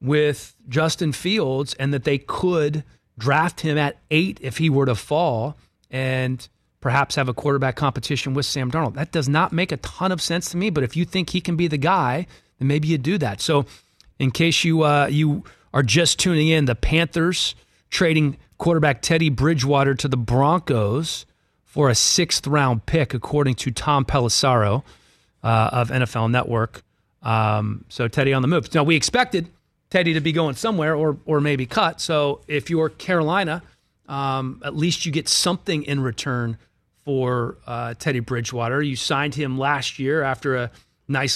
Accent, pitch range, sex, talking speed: American, 130-165 Hz, male, 175 wpm